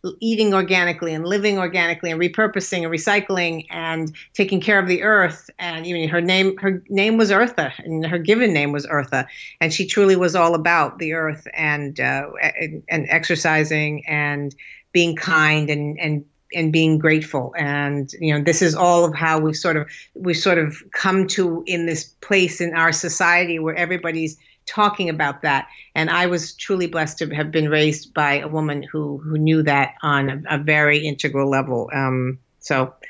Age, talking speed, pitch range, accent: 50-69, 185 wpm, 150-175 Hz, American